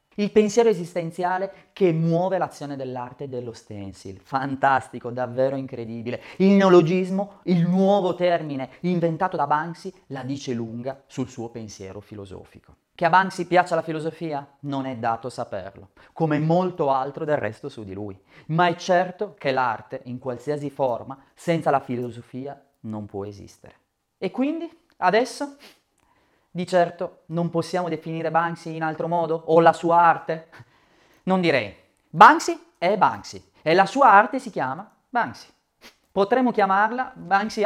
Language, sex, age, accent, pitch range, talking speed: Italian, male, 30-49, native, 135-190 Hz, 145 wpm